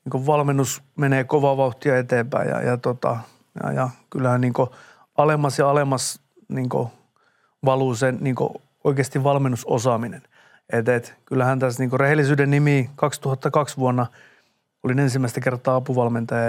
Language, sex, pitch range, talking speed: Finnish, male, 130-150 Hz, 125 wpm